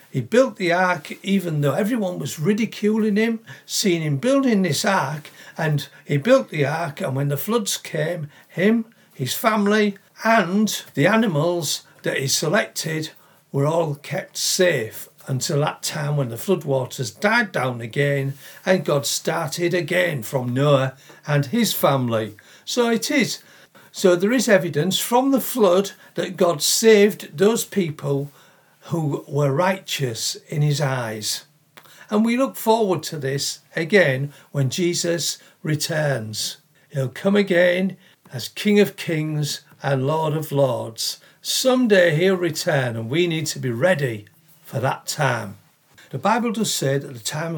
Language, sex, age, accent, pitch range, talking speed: English, male, 60-79, British, 140-190 Hz, 150 wpm